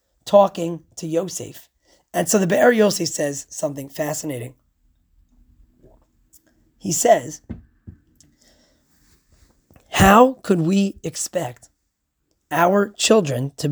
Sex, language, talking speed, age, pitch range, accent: male, English, 90 wpm, 30-49, 135-200 Hz, American